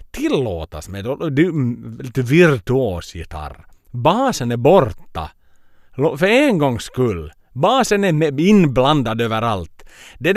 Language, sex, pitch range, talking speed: Swedish, male, 100-155 Hz, 100 wpm